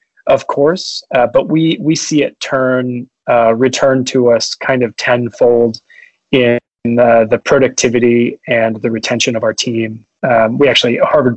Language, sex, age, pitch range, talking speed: English, male, 20-39, 120-135 Hz, 165 wpm